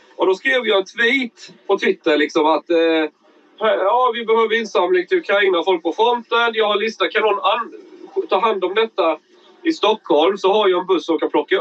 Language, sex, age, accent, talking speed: Swedish, male, 30-49, native, 205 wpm